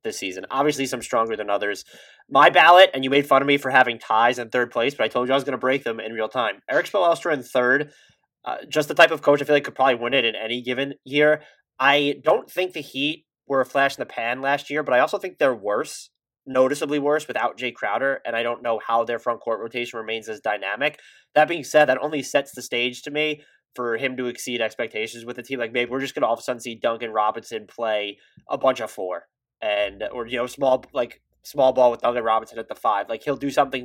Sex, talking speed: male, 255 wpm